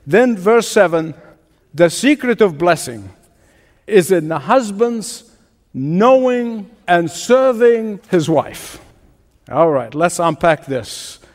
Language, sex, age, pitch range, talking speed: English, male, 60-79, 170-230 Hz, 110 wpm